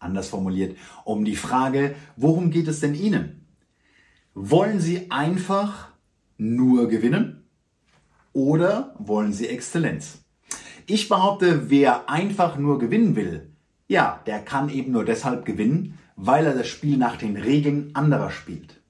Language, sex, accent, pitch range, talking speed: German, male, German, 115-180 Hz, 135 wpm